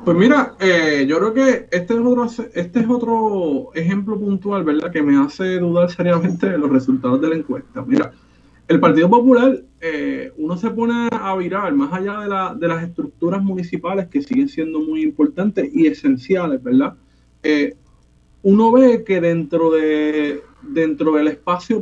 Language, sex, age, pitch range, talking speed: Spanish, male, 30-49, 160-245 Hz, 170 wpm